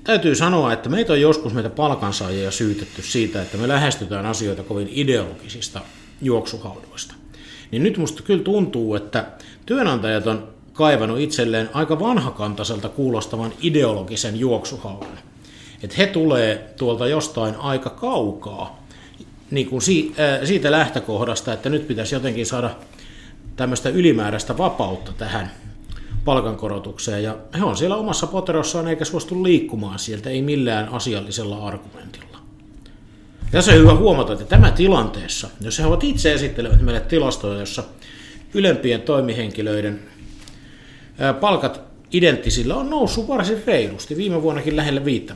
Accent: native